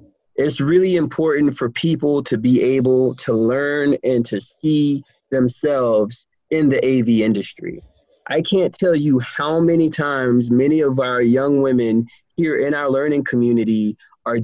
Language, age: English, 30-49